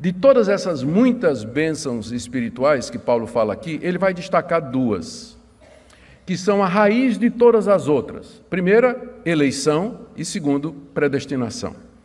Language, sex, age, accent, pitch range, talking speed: Portuguese, male, 50-69, Brazilian, 145-205 Hz, 135 wpm